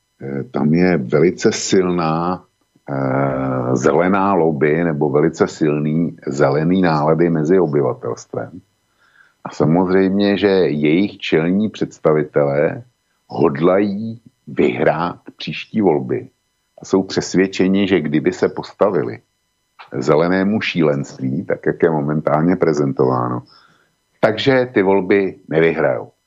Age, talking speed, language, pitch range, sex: 50-69, 95 wpm, Slovak, 75-95 Hz, male